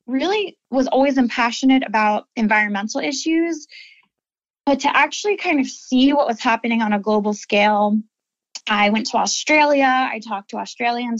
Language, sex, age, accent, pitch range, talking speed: English, female, 10-29, American, 220-265 Hz, 150 wpm